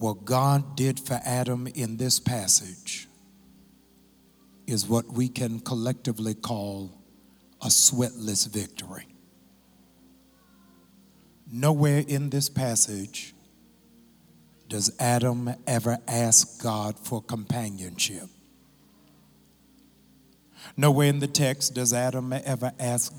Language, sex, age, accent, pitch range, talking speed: English, male, 60-79, American, 110-135 Hz, 95 wpm